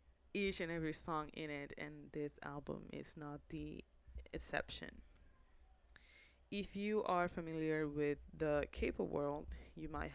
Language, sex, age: Japanese, female, 20-39